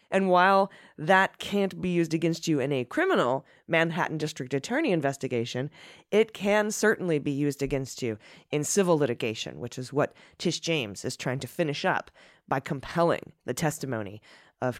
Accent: American